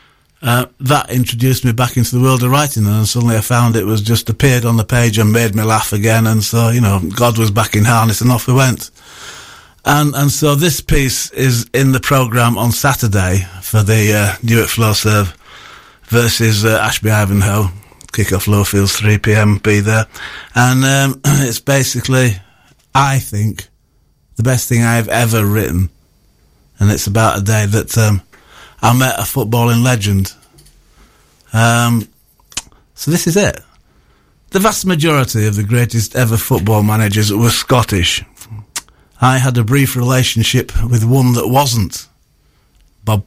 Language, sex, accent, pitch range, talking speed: English, male, British, 105-130 Hz, 160 wpm